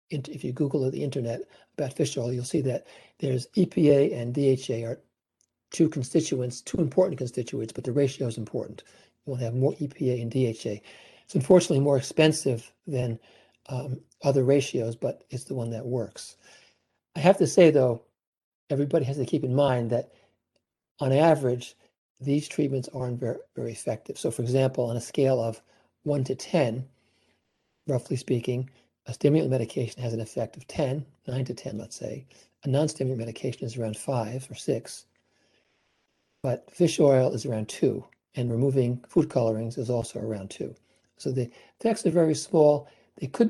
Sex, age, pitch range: male, 60-79, 120-145 Hz